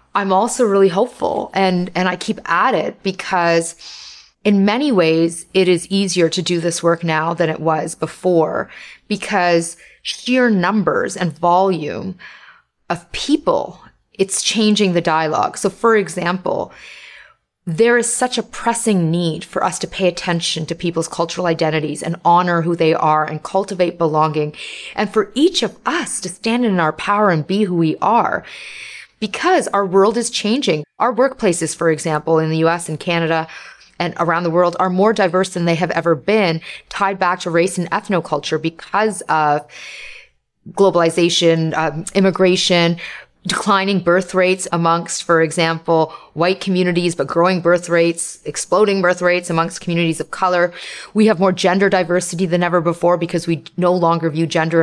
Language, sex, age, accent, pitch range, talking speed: English, female, 30-49, American, 165-195 Hz, 160 wpm